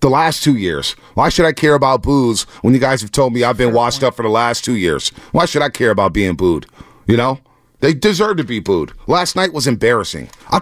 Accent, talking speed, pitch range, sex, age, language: American, 250 wpm, 105-140 Hz, male, 40-59, English